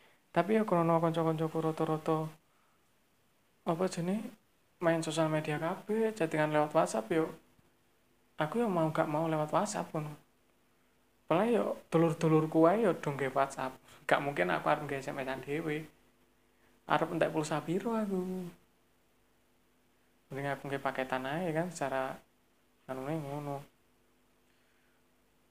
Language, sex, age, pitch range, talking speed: Malay, male, 20-39, 135-165 Hz, 120 wpm